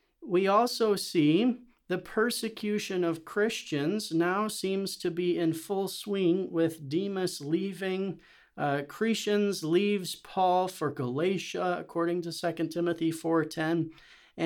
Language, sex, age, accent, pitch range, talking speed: English, male, 40-59, American, 155-200 Hz, 115 wpm